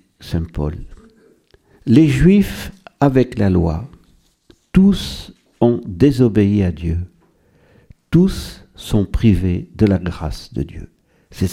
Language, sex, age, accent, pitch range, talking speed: French, male, 60-79, French, 90-115 Hz, 110 wpm